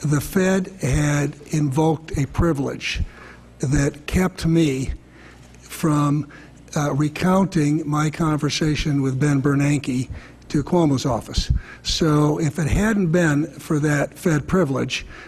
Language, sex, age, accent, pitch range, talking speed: English, male, 60-79, American, 140-160 Hz, 115 wpm